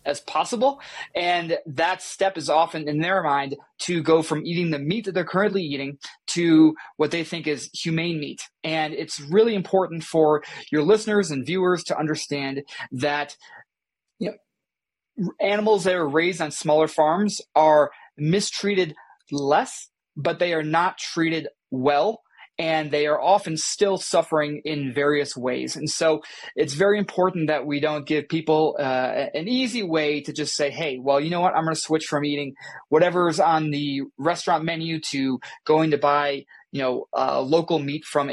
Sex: male